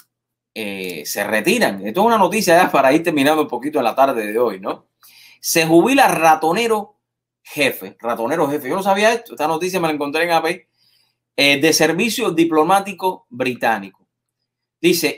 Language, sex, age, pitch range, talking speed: English, male, 30-49, 135-185 Hz, 160 wpm